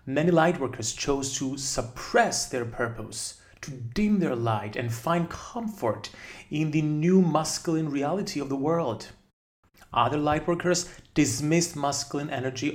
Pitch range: 115-155 Hz